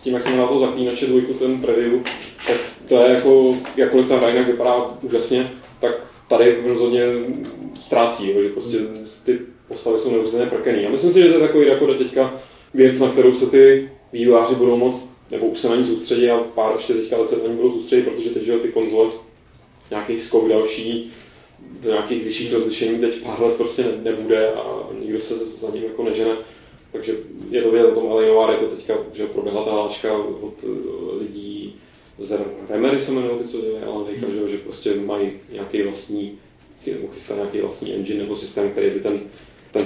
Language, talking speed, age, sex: Czech, 180 wpm, 20-39, male